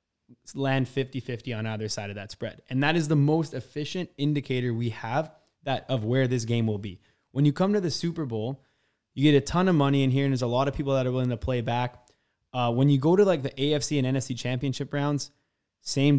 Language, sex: English, male